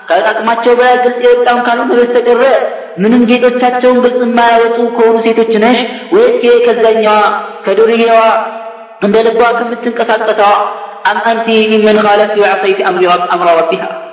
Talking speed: 125 wpm